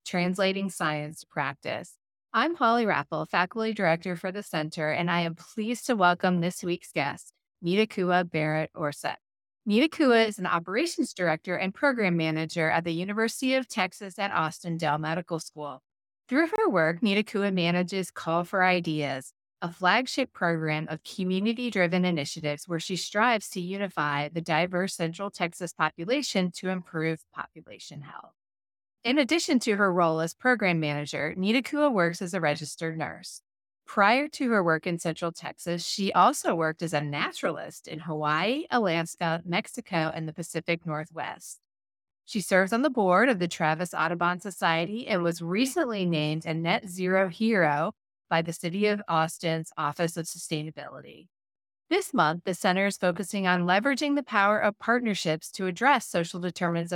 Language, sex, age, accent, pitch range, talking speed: English, female, 30-49, American, 160-205 Hz, 160 wpm